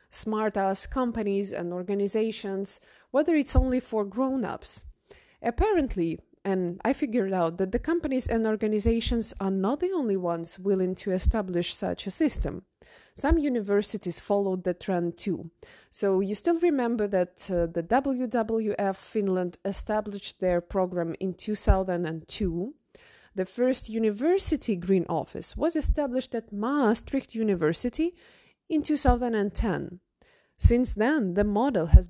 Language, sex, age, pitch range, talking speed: English, female, 20-39, 185-250 Hz, 125 wpm